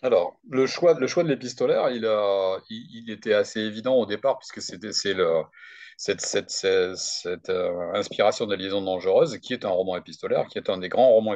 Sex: male